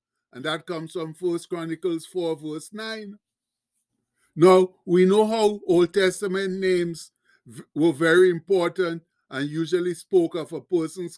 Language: English